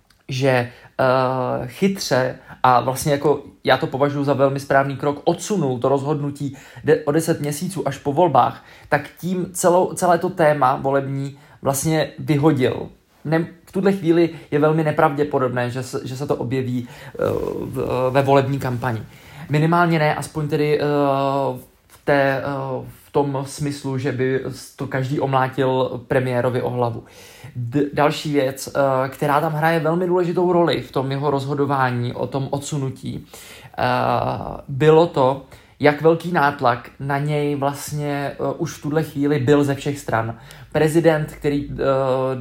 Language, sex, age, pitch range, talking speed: Czech, male, 20-39, 130-150 Hz, 145 wpm